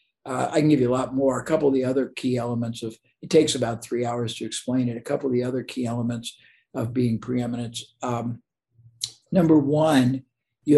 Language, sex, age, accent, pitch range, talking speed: English, male, 50-69, American, 120-135 Hz, 205 wpm